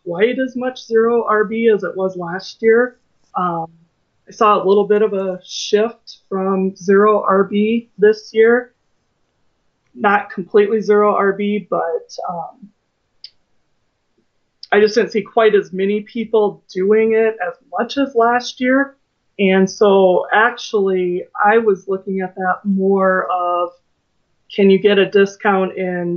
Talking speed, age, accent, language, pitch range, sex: 140 wpm, 30-49, American, English, 180-210 Hz, female